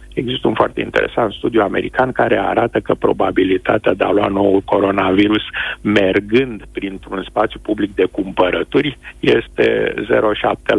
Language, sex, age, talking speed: Romanian, male, 50-69, 130 wpm